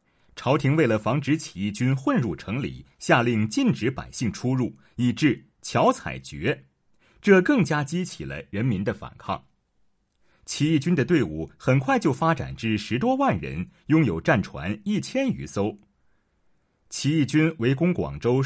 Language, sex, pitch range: Chinese, male, 110-170 Hz